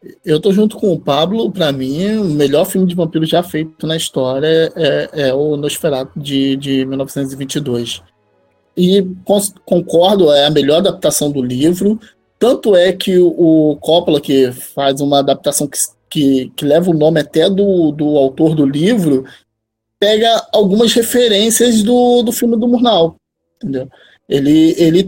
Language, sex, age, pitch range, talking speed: Portuguese, male, 20-39, 145-205 Hz, 150 wpm